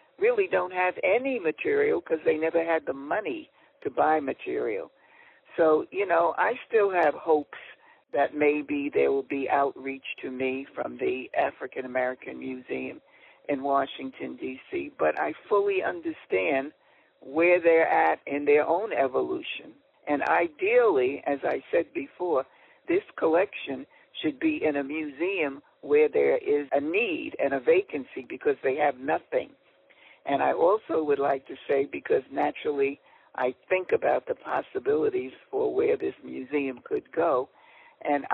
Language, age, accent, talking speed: English, 60-79, American, 145 wpm